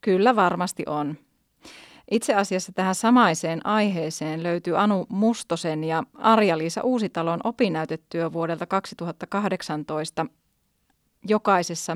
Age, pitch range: 30-49, 170-210 Hz